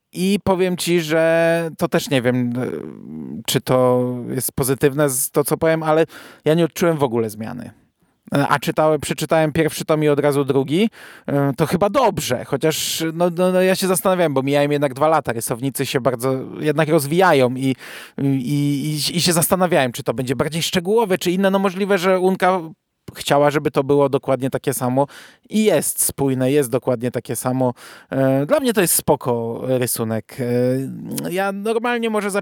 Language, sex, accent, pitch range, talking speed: Polish, male, native, 125-165 Hz, 170 wpm